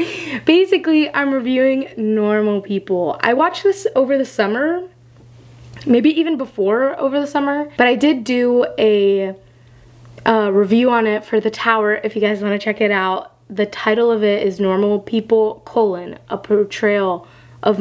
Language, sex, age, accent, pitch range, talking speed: English, female, 10-29, American, 185-240 Hz, 160 wpm